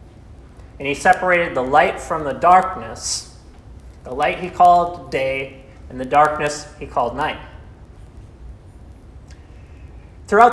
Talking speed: 115 wpm